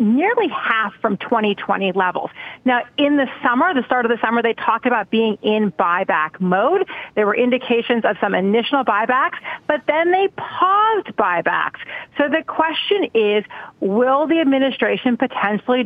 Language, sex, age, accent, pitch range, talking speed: English, female, 40-59, American, 220-285 Hz, 155 wpm